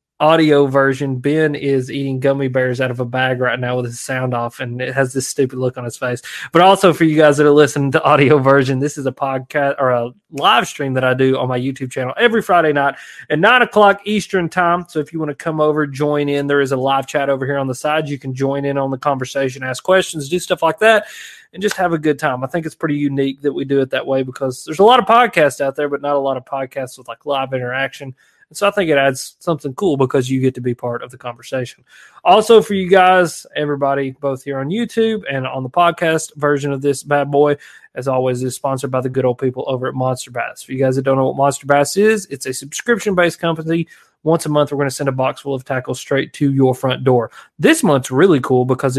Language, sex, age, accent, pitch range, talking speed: English, male, 30-49, American, 130-155 Hz, 255 wpm